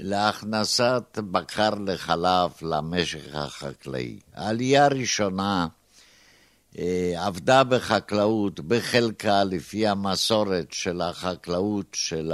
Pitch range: 90-115 Hz